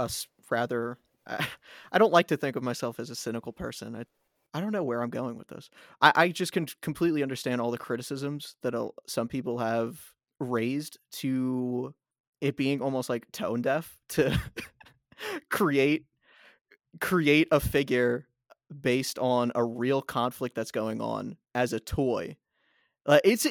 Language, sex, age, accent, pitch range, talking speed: English, male, 20-39, American, 120-155 Hz, 155 wpm